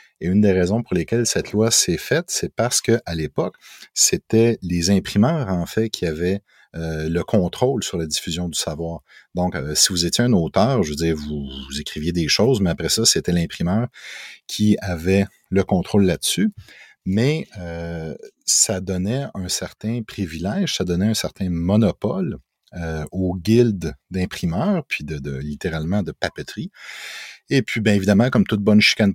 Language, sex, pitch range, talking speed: French, male, 85-105 Hz, 175 wpm